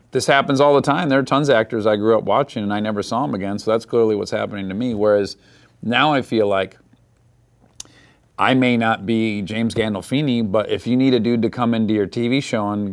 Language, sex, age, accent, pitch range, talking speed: English, male, 40-59, American, 100-125 Hz, 235 wpm